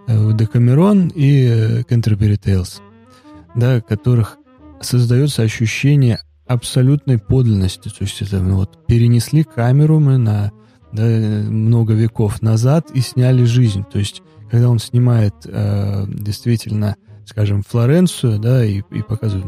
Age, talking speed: 20-39, 120 wpm